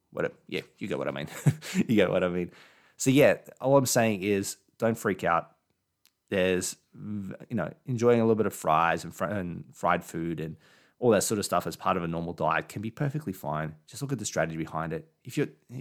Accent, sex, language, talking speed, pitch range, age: Australian, male, English, 220 wpm, 90-115 Hz, 20-39